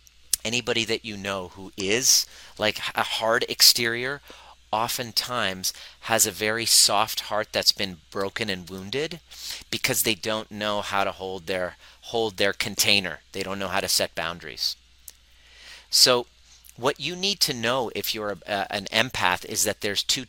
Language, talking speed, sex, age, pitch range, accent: English, 165 wpm, male, 40-59, 95-120 Hz, American